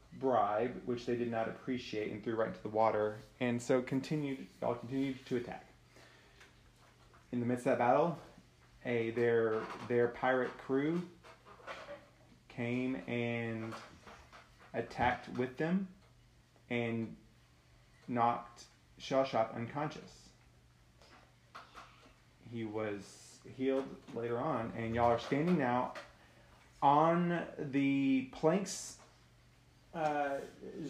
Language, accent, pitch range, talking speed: English, American, 115-140 Hz, 105 wpm